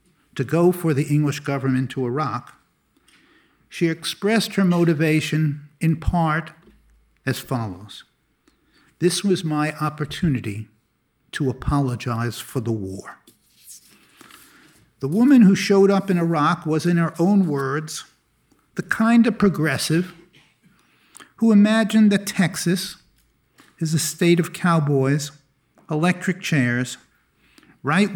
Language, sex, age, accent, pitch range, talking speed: English, male, 50-69, American, 145-190 Hz, 115 wpm